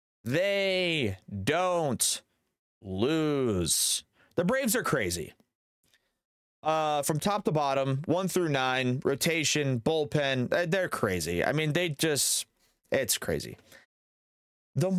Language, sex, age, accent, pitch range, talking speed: English, male, 30-49, American, 110-155 Hz, 95 wpm